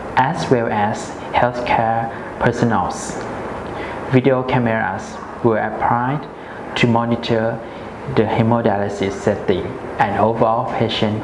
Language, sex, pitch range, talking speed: English, male, 115-130 Hz, 90 wpm